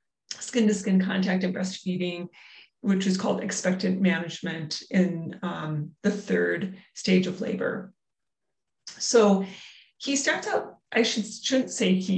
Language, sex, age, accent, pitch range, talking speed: English, female, 30-49, American, 180-210 Hz, 125 wpm